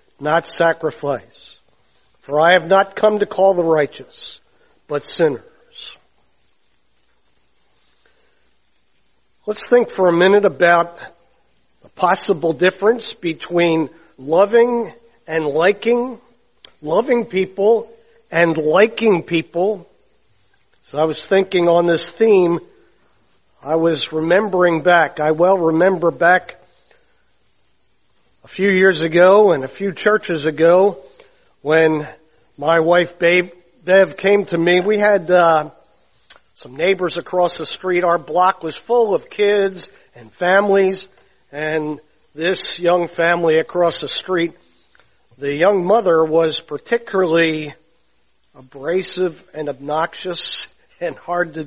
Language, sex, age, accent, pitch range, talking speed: English, male, 50-69, American, 160-195 Hz, 110 wpm